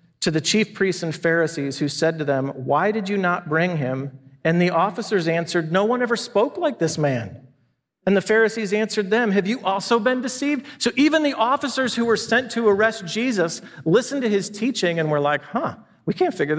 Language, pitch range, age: English, 160-215 Hz, 40-59